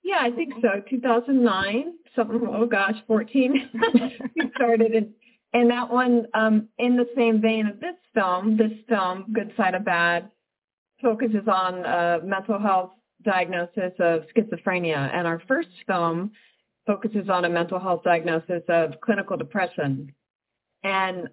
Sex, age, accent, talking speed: female, 40-59, American, 145 wpm